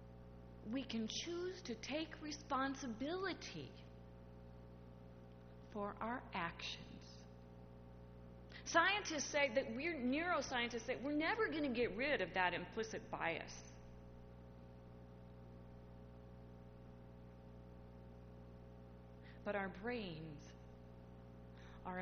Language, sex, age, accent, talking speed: English, female, 30-49, American, 80 wpm